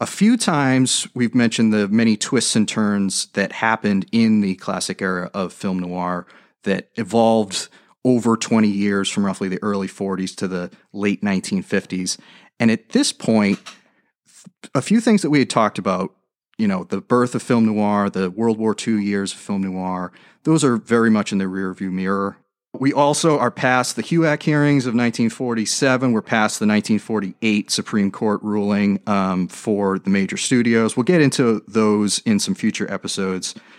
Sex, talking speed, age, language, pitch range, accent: male, 170 wpm, 30-49, English, 100-125 Hz, American